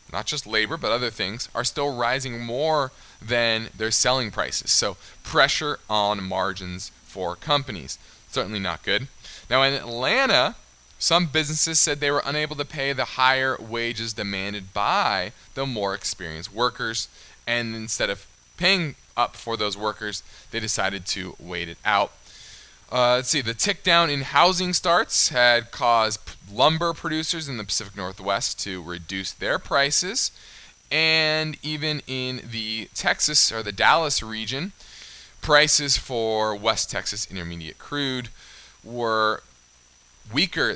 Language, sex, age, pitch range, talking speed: English, male, 20-39, 100-135 Hz, 140 wpm